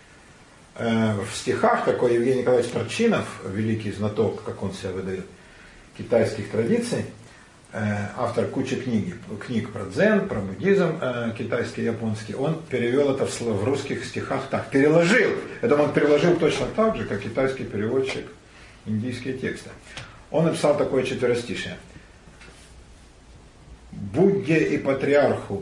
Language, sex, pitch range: Russian, male, 100-130 Hz